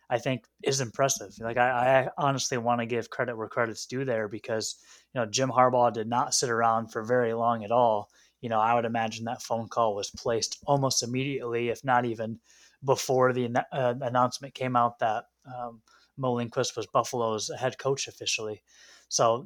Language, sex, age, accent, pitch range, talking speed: English, male, 20-39, American, 120-140 Hz, 185 wpm